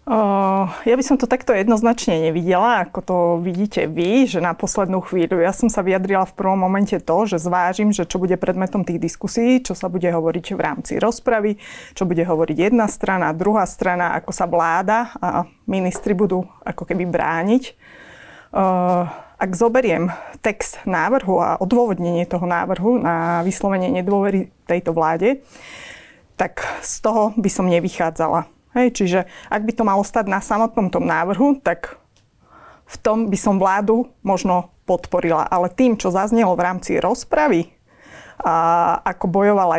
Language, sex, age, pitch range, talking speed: Slovak, female, 20-39, 180-215 Hz, 155 wpm